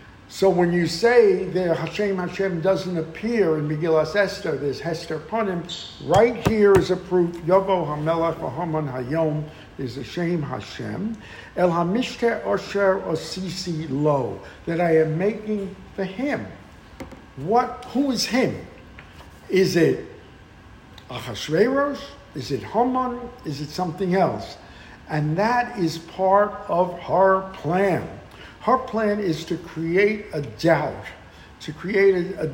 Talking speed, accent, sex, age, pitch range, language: 130 wpm, American, male, 60-79, 155-200 Hz, English